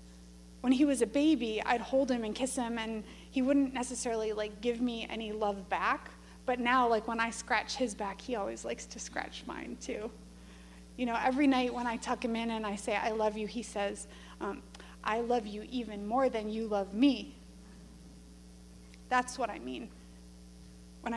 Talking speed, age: 195 wpm, 30-49